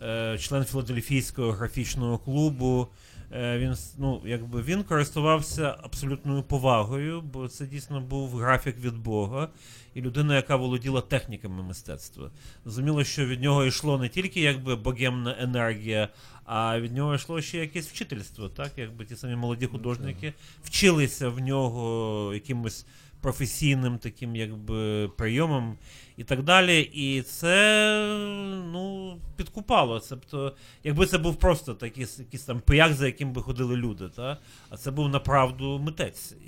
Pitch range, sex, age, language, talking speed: 120-150 Hz, male, 30-49, Ukrainian, 130 wpm